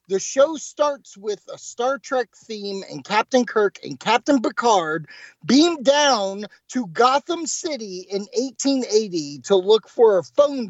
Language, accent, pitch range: English, American, 170-240 Hz